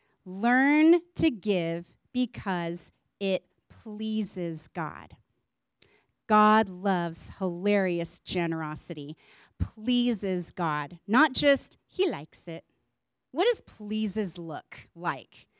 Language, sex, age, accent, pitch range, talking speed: English, female, 30-49, American, 180-240 Hz, 90 wpm